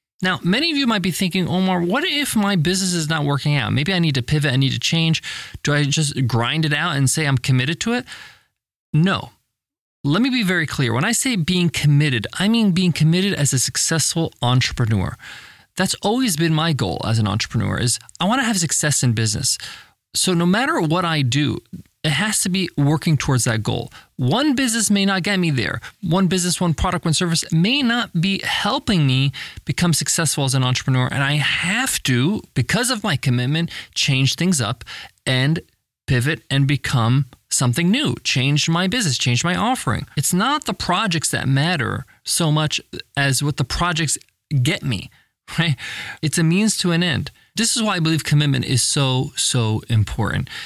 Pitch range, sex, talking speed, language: 130-175 Hz, male, 195 wpm, English